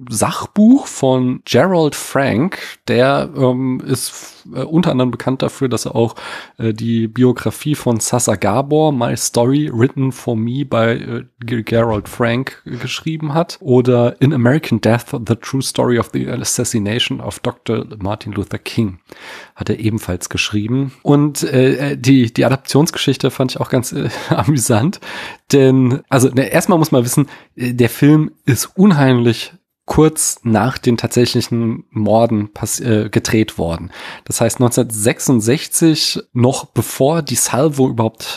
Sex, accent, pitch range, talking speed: male, German, 115-135 Hz, 145 wpm